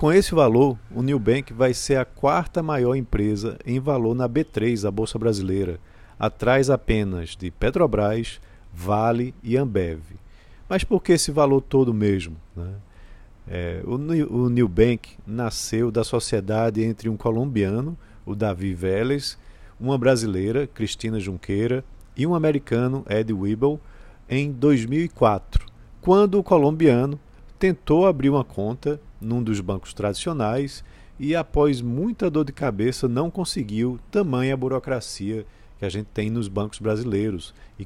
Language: Portuguese